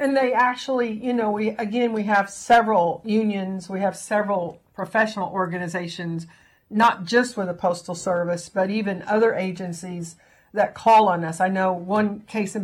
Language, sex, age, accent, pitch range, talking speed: English, female, 50-69, American, 185-225 Hz, 165 wpm